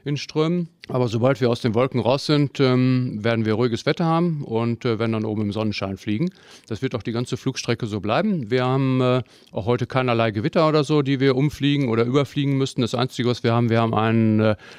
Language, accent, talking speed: German, German, 225 wpm